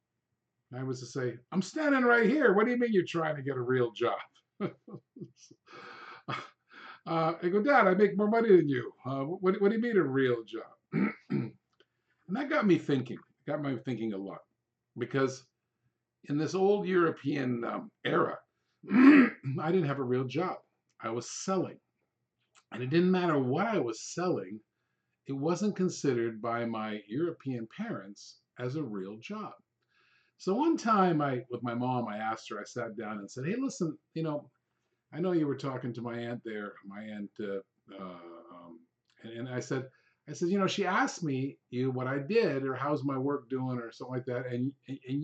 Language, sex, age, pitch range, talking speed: English, male, 50-69, 120-180 Hz, 190 wpm